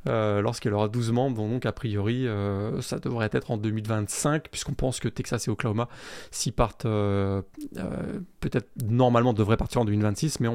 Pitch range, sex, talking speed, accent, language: 115-160 Hz, male, 175 wpm, French, French